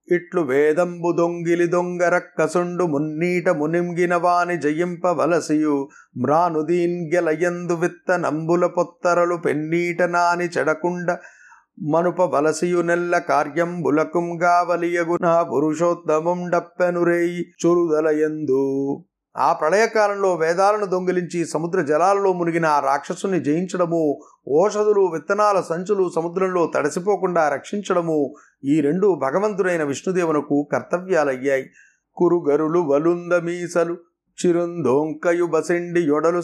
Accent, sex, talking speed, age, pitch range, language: native, male, 45 wpm, 30-49, 155-180 Hz, Telugu